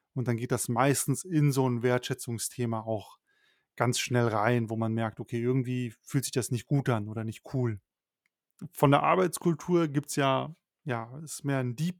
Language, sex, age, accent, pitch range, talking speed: German, male, 30-49, German, 125-150 Hz, 195 wpm